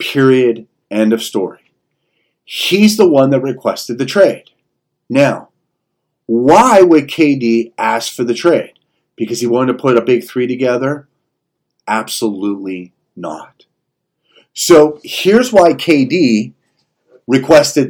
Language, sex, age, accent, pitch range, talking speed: English, male, 40-59, American, 115-150 Hz, 115 wpm